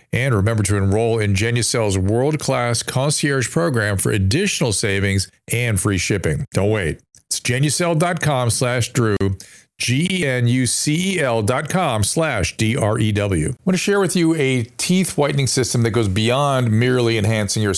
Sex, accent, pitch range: male, American, 105-145 Hz